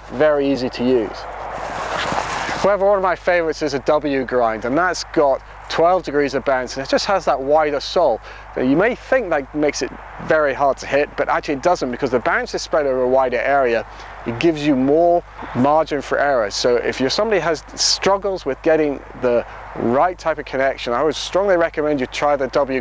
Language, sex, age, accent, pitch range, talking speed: English, male, 30-49, British, 130-170 Hz, 210 wpm